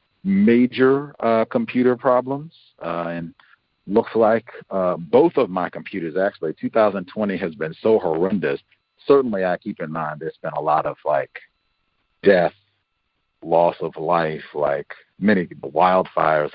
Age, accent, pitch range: 50-69, American, 95-125 Hz